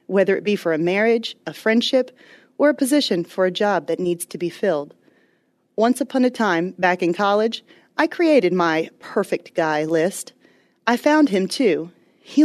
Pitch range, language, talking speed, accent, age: 180-250 Hz, English, 180 wpm, American, 30-49